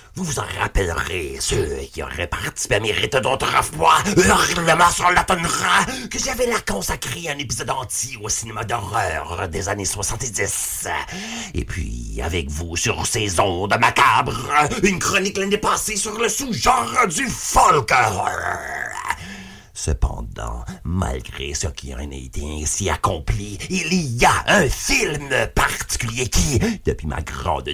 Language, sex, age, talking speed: French, male, 50-69, 140 wpm